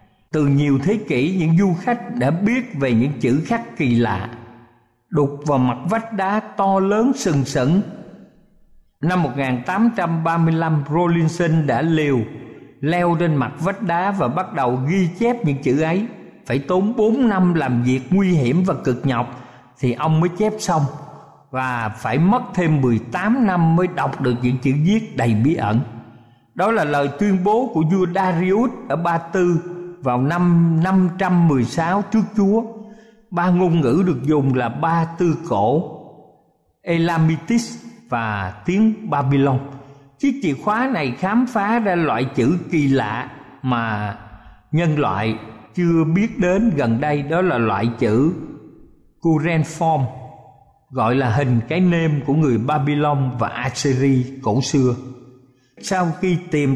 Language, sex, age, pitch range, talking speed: Vietnamese, male, 50-69, 130-185 Hz, 150 wpm